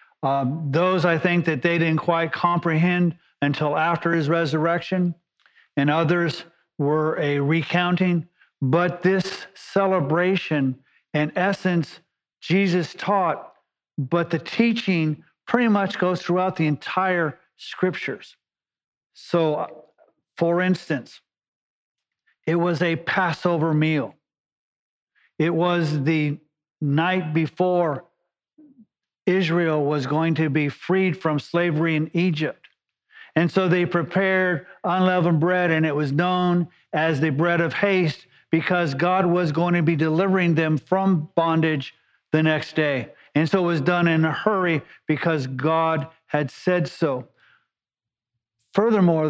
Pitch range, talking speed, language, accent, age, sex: 155-180 Hz, 120 wpm, English, American, 50-69, male